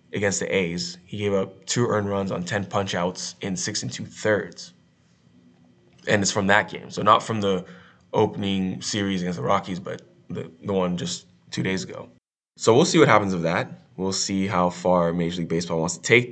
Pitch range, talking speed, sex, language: 90-105 Hz, 210 wpm, male, English